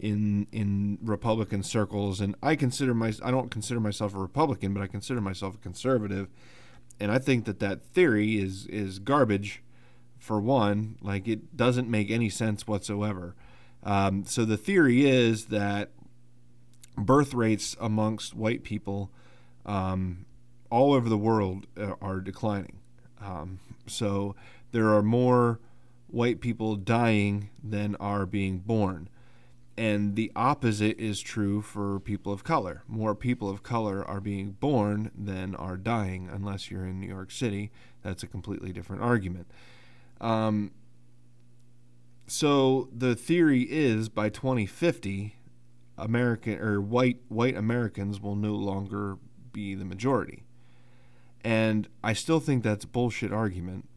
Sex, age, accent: male, 30-49, American